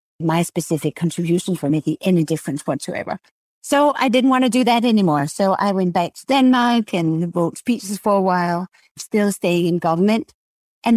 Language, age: English, 50-69